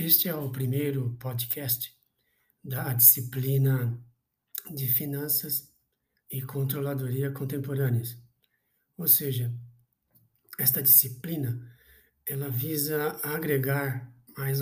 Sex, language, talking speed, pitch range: male, Portuguese, 80 wpm, 130-150 Hz